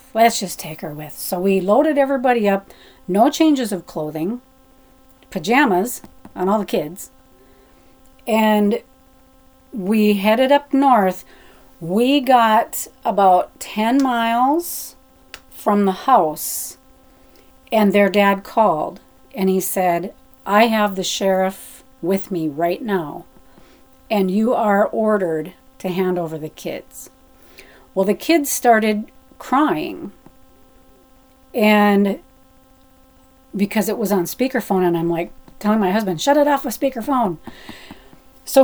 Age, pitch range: 40-59, 190-265 Hz